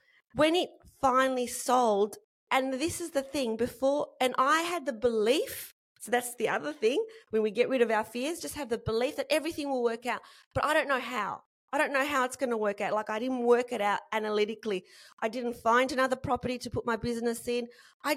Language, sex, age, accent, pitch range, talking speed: English, female, 30-49, Australian, 225-275 Hz, 225 wpm